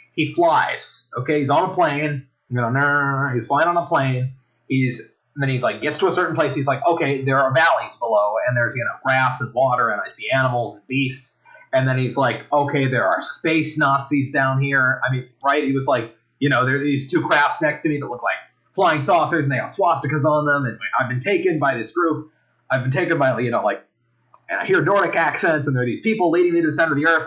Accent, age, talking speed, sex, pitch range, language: American, 30-49, 245 wpm, male, 125-150 Hz, English